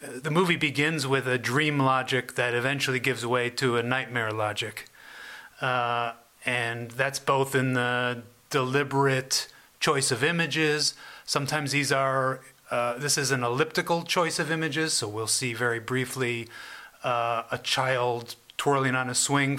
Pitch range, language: 125-150 Hz, English